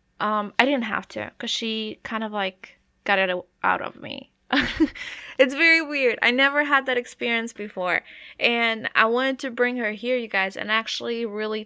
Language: English